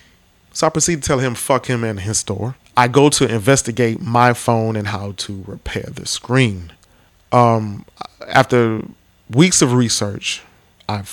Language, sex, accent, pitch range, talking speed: English, male, American, 100-130 Hz, 155 wpm